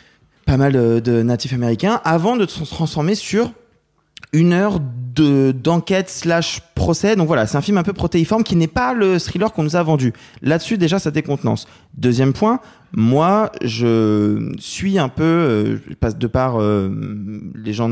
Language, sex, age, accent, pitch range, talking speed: French, male, 20-39, French, 115-170 Hz, 170 wpm